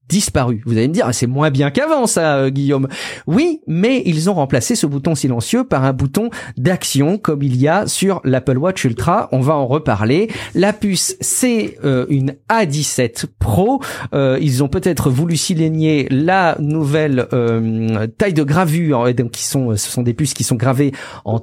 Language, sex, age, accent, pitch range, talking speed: French, male, 50-69, French, 125-165 Hz, 190 wpm